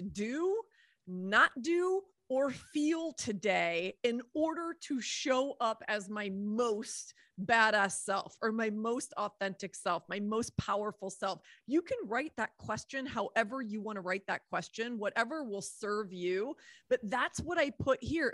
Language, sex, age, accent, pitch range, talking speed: English, female, 30-49, American, 205-275 Hz, 155 wpm